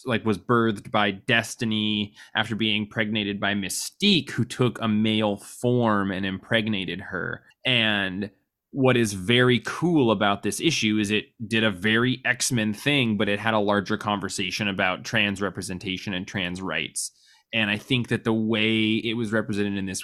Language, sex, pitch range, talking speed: English, male, 100-115 Hz, 170 wpm